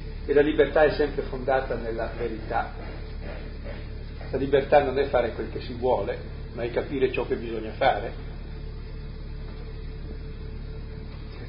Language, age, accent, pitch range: Italian, 50-69, native, 110-150 Hz